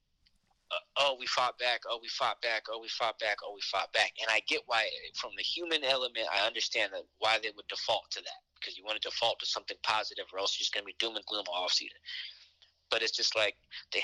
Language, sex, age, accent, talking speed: English, male, 20-39, American, 245 wpm